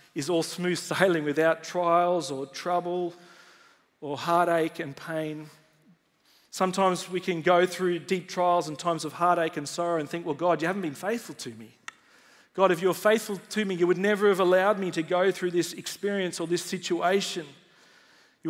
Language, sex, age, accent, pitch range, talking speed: English, male, 40-59, Australian, 175-210 Hz, 185 wpm